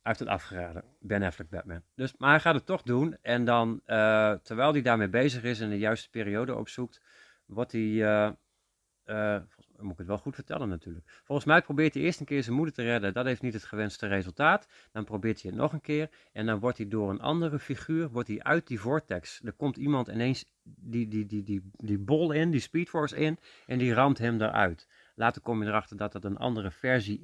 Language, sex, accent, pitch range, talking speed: Dutch, male, Dutch, 105-135 Hz, 230 wpm